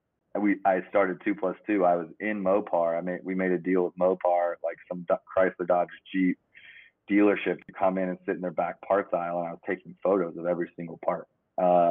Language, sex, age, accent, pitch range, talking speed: English, male, 30-49, American, 85-95 Hz, 225 wpm